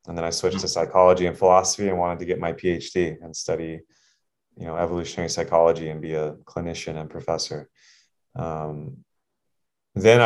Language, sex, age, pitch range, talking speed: English, male, 20-39, 85-95 Hz, 165 wpm